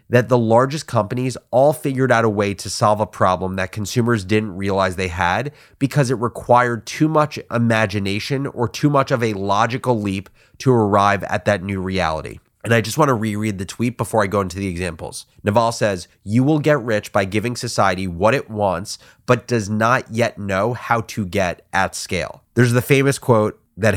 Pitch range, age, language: 100-125 Hz, 30-49, English